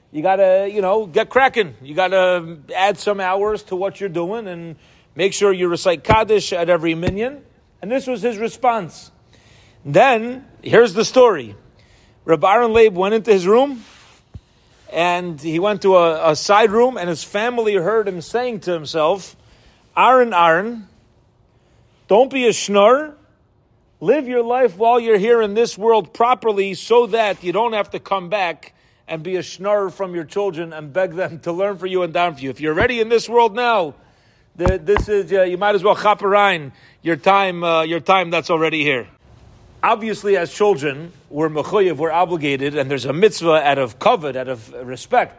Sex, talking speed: male, 180 wpm